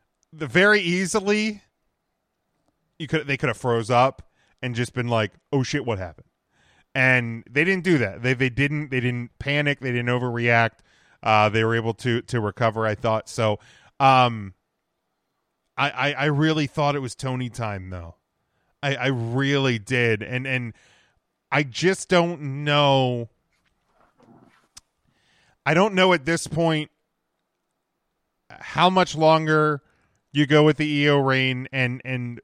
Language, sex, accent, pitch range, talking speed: English, male, American, 125-160 Hz, 150 wpm